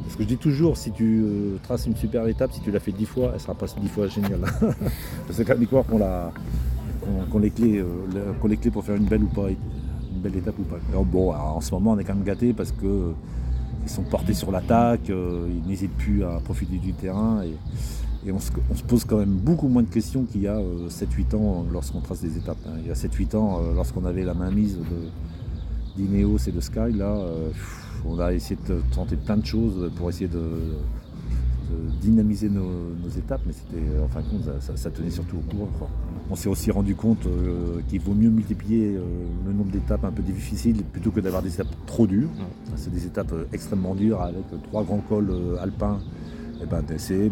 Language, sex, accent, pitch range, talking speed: French, male, French, 85-105 Hz, 220 wpm